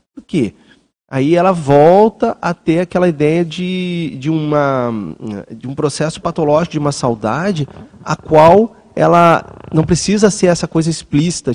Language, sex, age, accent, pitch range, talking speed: Portuguese, male, 30-49, Brazilian, 140-180 Hz, 135 wpm